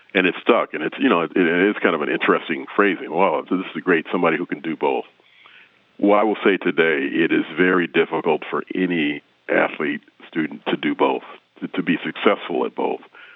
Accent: American